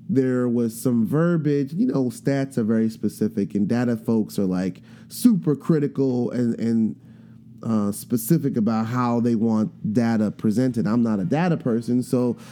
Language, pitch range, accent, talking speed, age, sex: English, 115-145 Hz, American, 160 wpm, 20-39, male